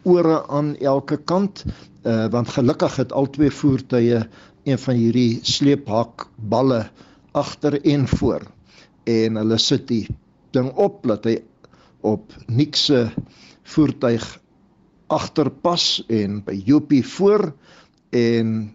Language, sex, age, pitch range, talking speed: English, male, 60-79, 115-140 Hz, 120 wpm